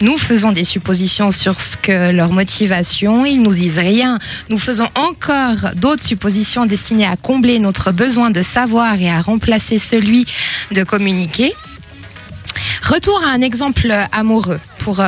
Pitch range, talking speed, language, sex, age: 190-245 Hz, 145 wpm, French, female, 20-39